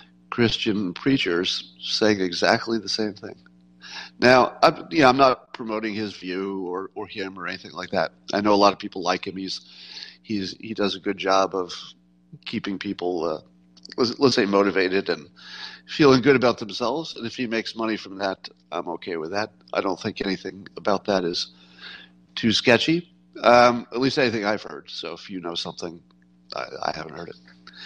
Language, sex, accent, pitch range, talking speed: English, male, American, 85-120 Hz, 185 wpm